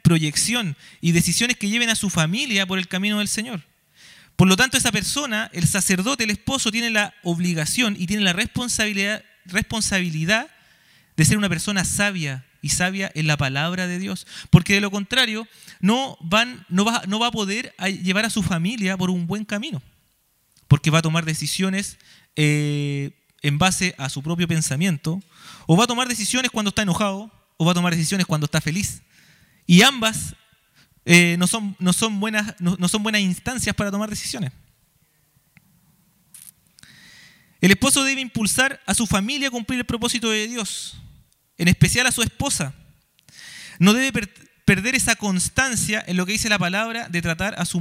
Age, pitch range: 30-49, 165-220 Hz